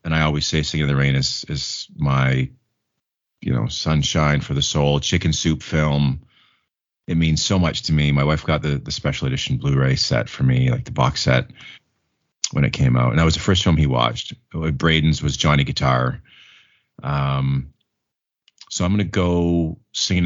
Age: 30-49